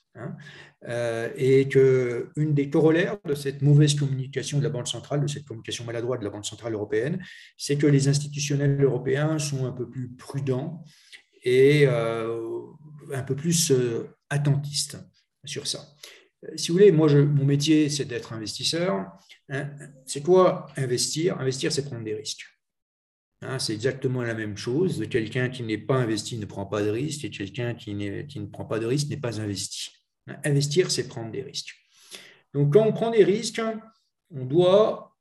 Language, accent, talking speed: French, French, 175 wpm